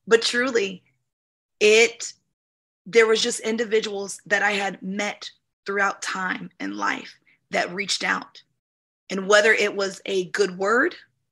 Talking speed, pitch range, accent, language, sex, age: 135 wpm, 200-240 Hz, American, English, female, 20-39